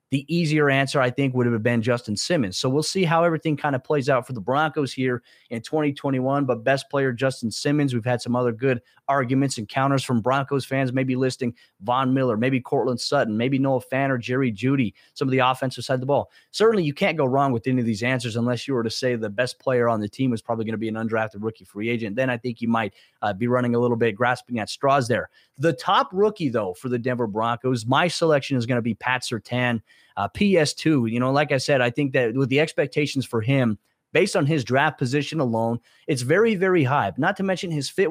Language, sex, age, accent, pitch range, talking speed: English, male, 30-49, American, 120-150 Hz, 240 wpm